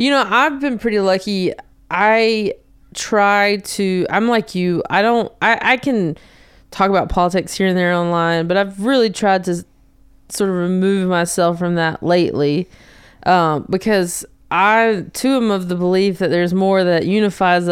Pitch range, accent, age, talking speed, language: 165-200 Hz, American, 20-39, 165 wpm, English